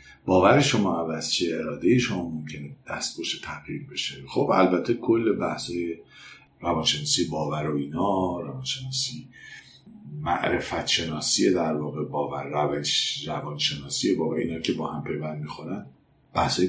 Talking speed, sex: 120 wpm, male